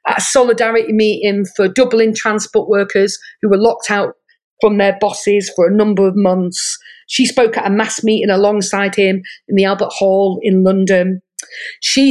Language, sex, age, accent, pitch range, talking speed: English, female, 40-59, British, 190-225 Hz, 175 wpm